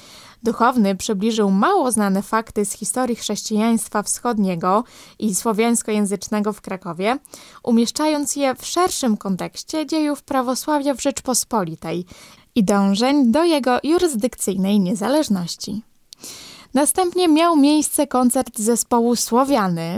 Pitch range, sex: 210-260 Hz, female